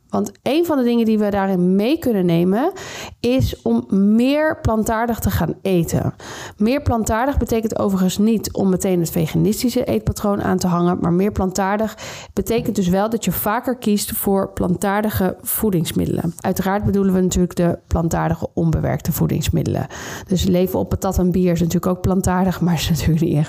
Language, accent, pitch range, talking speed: Dutch, Dutch, 185-235 Hz, 170 wpm